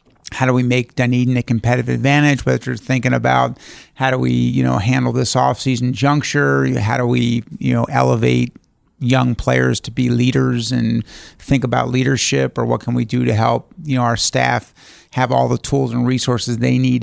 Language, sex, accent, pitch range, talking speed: English, male, American, 115-130 Hz, 195 wpm